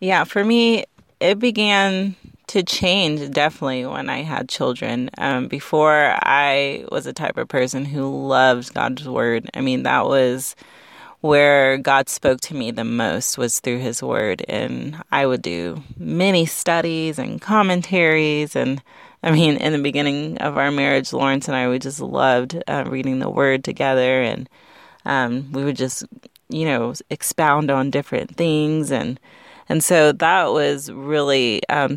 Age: 30-49